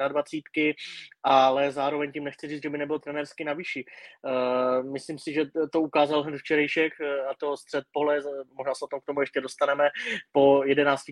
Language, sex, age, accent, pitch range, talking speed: Czech, male, 20-39, native, 140-150 Hz, 185 wpm